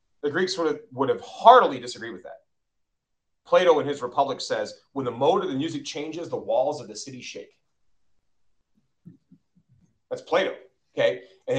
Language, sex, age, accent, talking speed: English, male, 30-49, American, 165 wpm